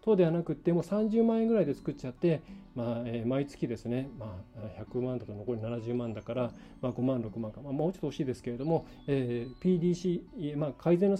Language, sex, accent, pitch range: Japanese, male, native, 125-180 Hz